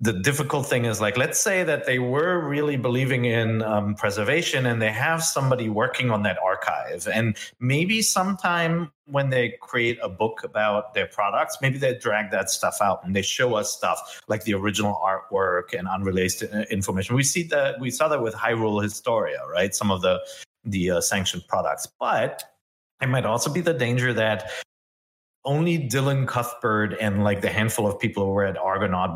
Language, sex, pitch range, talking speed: English, male, 105-140 Hz, 185 wpm